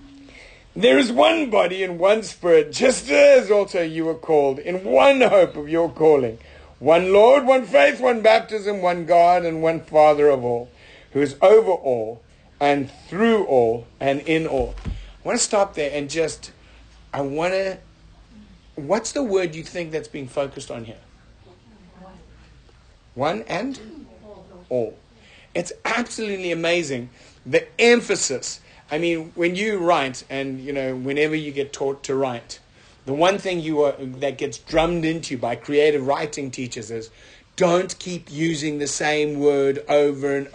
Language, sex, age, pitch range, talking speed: English, male, 50-69, 140-195 Hz, 155 wpm